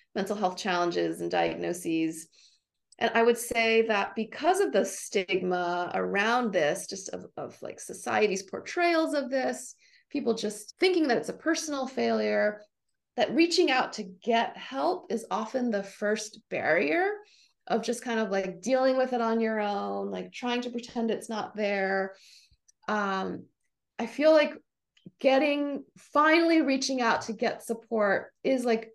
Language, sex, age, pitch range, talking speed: English, female, 30-49, 210-275 Hz, 155 wpm